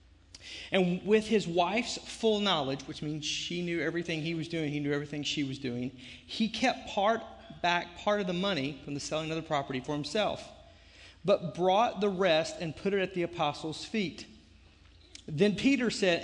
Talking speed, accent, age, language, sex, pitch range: 185 wpm, American, 40-59, English, male, 150-200 Hz